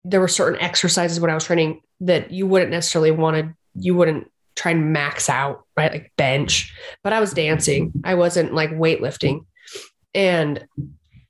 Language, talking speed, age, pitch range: English, 170 wpm, 30-49, 170-200 Hz